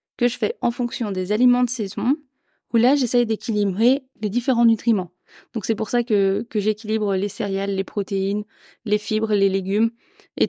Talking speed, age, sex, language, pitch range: 185 wpm, 20-39, female, French, 200-240 Hz